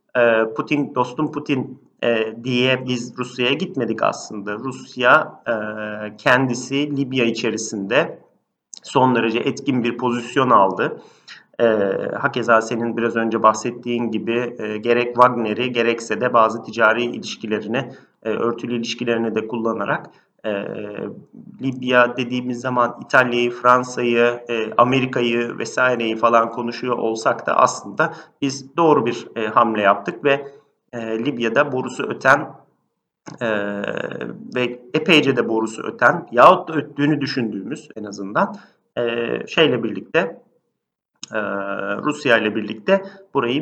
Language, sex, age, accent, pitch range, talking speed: Turkish, male, 40-59, native, 115-135 Hz, 105 wpm